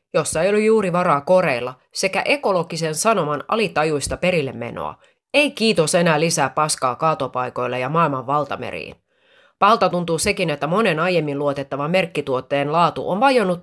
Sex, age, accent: female, 30-49, native